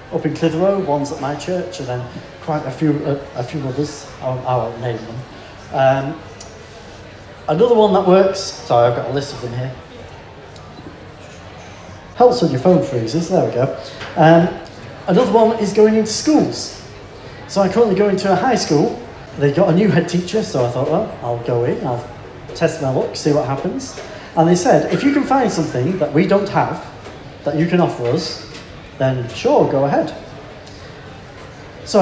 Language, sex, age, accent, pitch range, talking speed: English, male, 30-49, British, 125-170 Hz, 185 wpm